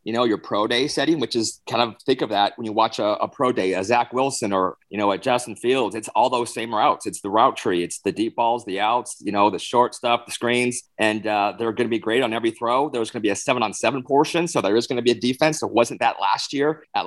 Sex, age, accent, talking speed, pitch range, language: male, 30-49, American, 295 wpm, 110-130 Hz, English